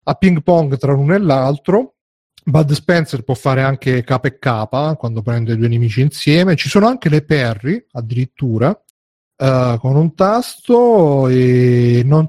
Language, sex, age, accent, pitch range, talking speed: Italian, male, 40-59, native, 120-145 Hz, 155 wpm